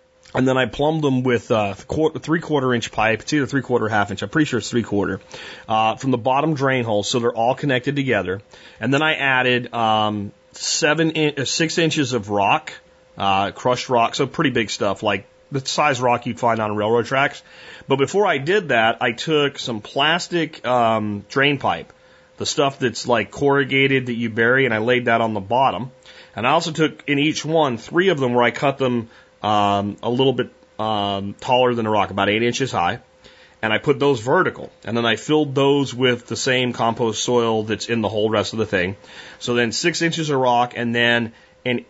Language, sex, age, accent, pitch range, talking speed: English, male, 30-49, American, 110-140 Hz, 210 wpm